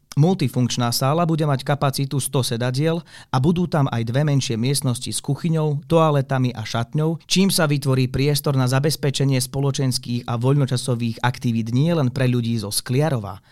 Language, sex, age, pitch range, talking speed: Slovak, male, 30-49, 120-150 Hz, 155 wpm